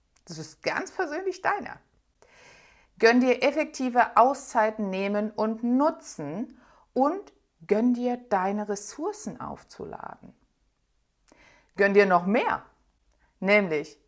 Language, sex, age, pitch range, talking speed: German, female, 60-79, 160-245 Hz, 100 wpm